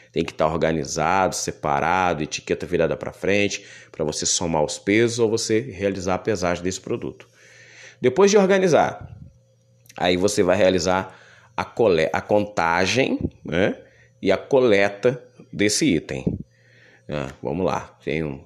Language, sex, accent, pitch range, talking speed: Portuguese, male, Brazilian, 80-120 Hz, 135 wpm